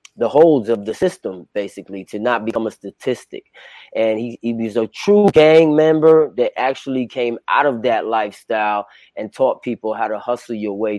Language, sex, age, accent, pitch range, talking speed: English, male, 30-49, American, 105-125 Hz, 185 wpm